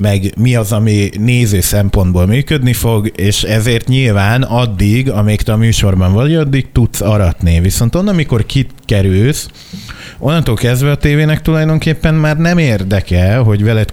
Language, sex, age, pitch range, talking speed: Hungarian, male, 30-49, 100-130 Hz, 145 wpm